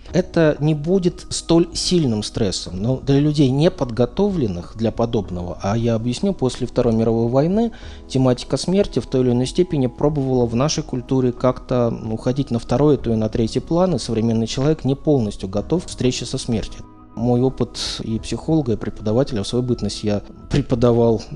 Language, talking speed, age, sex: Russian, 170 wpm, 20-39, male